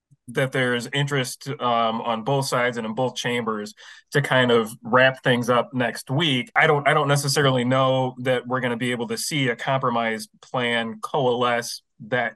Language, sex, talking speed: English, male, 185 wpm